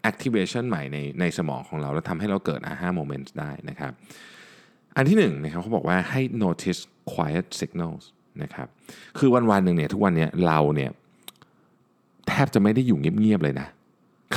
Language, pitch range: Thai, 80-115 Hz